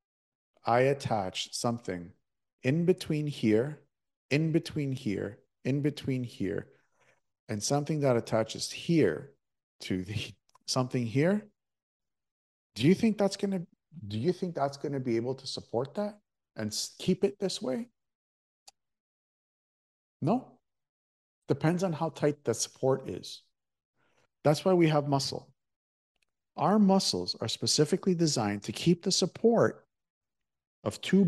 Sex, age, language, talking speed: male, 50-69, English, 125 wpm